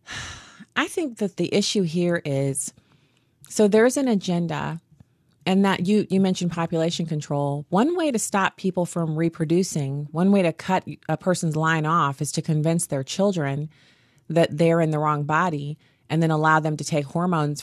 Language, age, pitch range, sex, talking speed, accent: English, 30-49, 145-175 Hz, female, 175 wpm, American